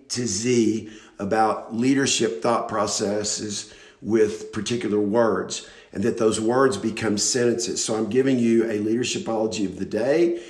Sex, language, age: male, English, 50-69